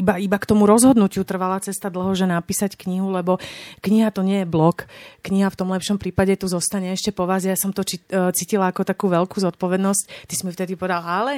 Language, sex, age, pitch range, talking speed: Slovak, female, 30-49, 180-205 Hz, 210 wpm